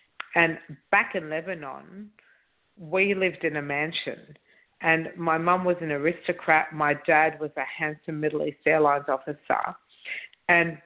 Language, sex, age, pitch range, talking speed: English, female, 50-69, 145-170 Hz, 140 wpm